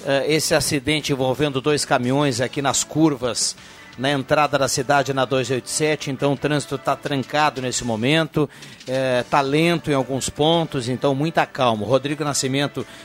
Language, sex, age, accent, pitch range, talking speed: Portuguese, male, 50-69, Brazilian, 135-160 Hz, 145 wpm